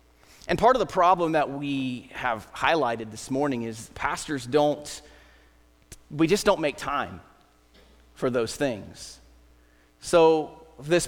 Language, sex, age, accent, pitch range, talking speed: English, male, 30-49, American, 115-150 Hz, 130 wpm